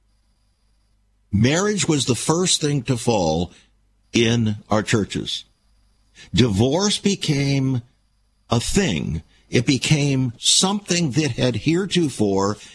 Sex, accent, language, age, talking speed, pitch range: male, American, English, 60-79, 95 wpm, 105-140 Hz